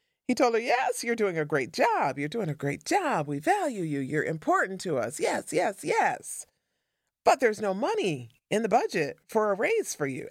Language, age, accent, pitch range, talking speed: English, 40-59, American, 140-200 Hz, 210 wpm